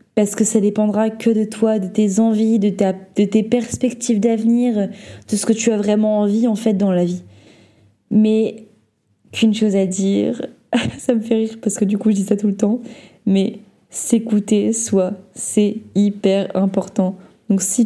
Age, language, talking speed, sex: 20-39, French, 185 wpm, female